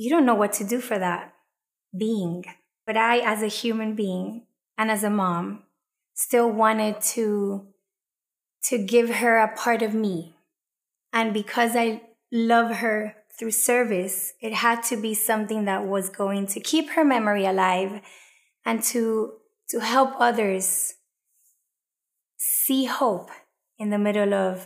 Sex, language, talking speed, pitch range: female, English, 145 wpm, 195-235 Hz